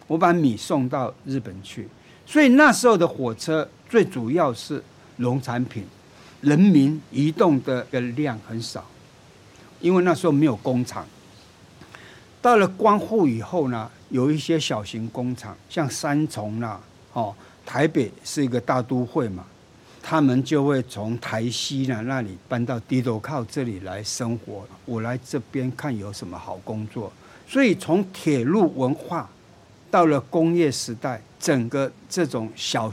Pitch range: 115-145 Hz